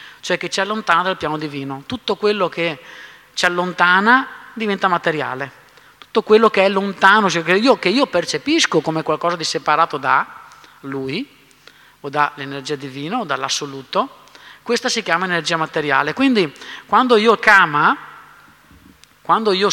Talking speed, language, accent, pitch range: 135 wpm, Italian, native, 160-215 Hz